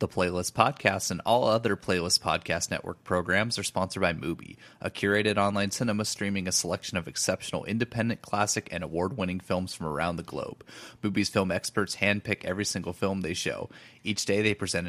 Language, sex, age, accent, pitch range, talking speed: English, male, 30-49, American, 95-110 Hz, 180 wpm